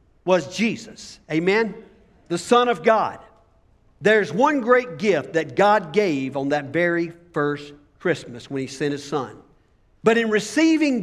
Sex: male